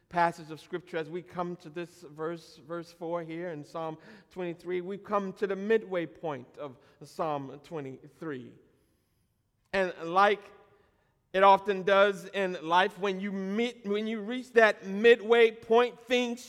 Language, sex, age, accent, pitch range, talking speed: English, male, 50-69, American, 180-255 Hz, 150 wpm